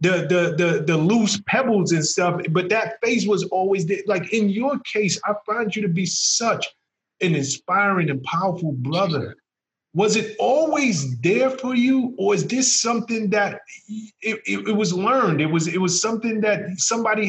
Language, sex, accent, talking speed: English, male, American, 180 wpm